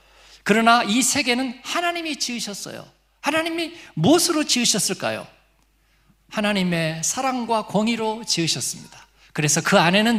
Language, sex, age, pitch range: Korean, male, 50-69, 190-245 Hz